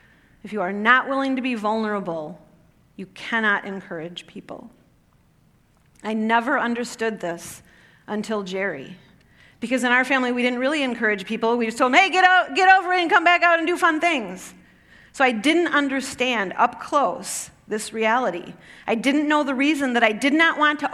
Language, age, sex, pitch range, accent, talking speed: English, 40-59, female, 230-300 Hz, American, 185 wpm